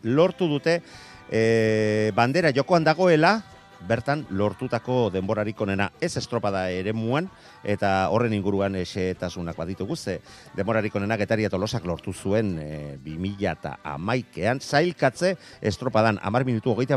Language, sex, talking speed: Spanish, male, 125 wpm